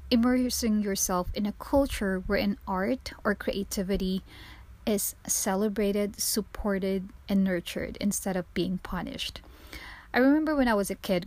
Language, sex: English, female